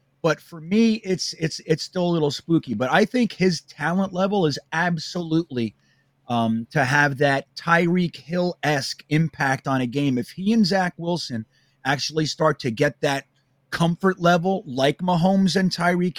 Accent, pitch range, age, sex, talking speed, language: American, 140-180 Hz, 30-49, male, 165 wpm, English